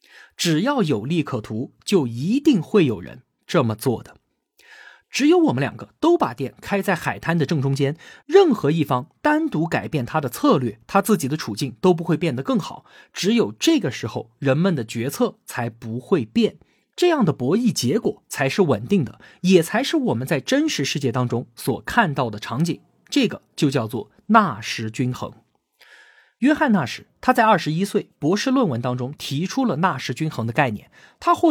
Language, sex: Chinese, male